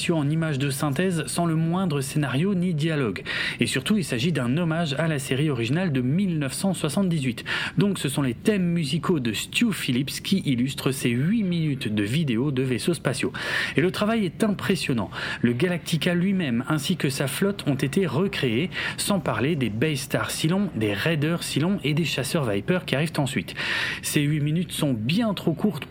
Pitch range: 130-180 Hz